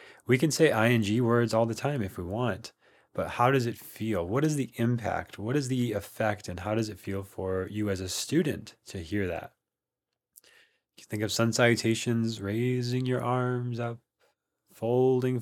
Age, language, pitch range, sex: 20-39, English, 105-125 Hz, male